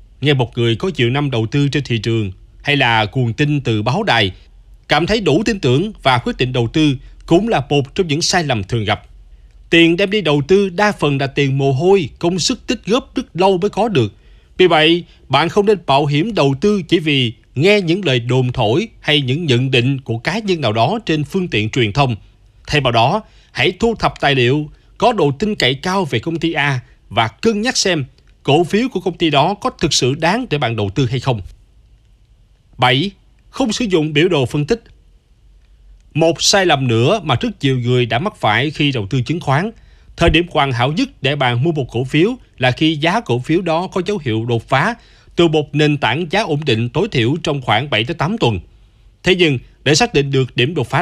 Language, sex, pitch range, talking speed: Vietnamese, male, 120-175 Hz, 225 wpm